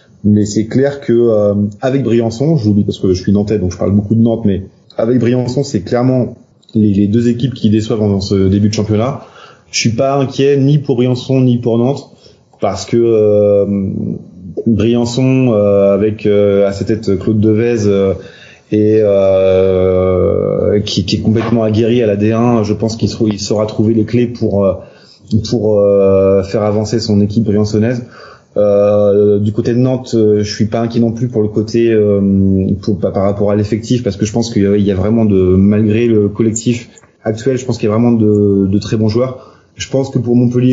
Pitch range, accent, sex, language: 100-120 Hz, French, male, French